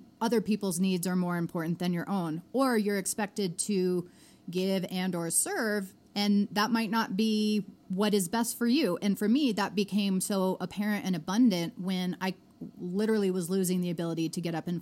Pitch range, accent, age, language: 180-215 Hz, American, 30-49, English